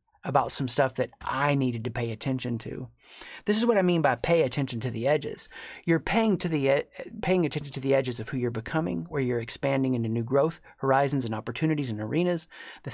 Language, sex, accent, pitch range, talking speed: English, male, American, 130-165 Hz, 215 wpm